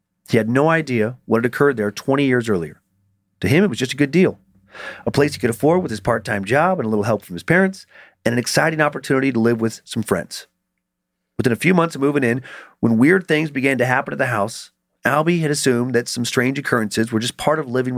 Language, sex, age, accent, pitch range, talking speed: English, male, 40-59, American, 110-145 Hz, 240 wpm